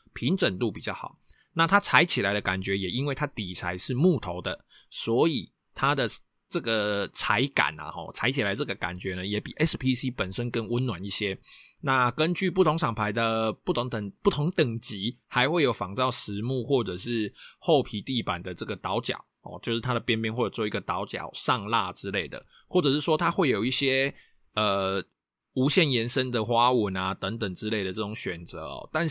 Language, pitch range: Chinese, 105-150 Hz